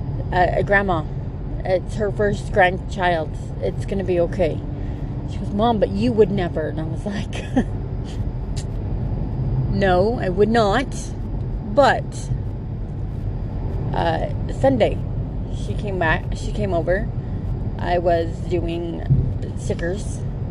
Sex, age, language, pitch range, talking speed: female, 30-49, English, 115-135 Hz, 115 wpm